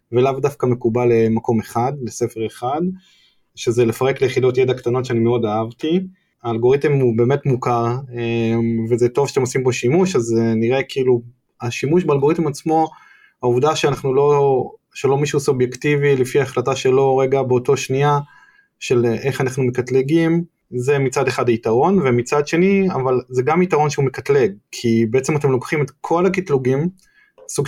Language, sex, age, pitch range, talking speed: Hebrew, male, 20-39, 120-150 Hz, 145 wpm